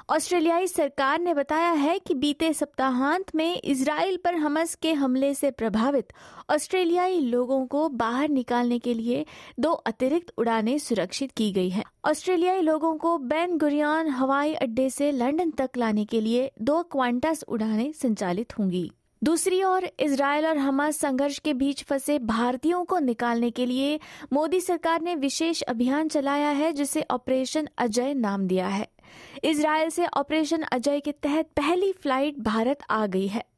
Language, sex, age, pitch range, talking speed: Hindi, female, 20-39, 245-310 Hz, 155 wpm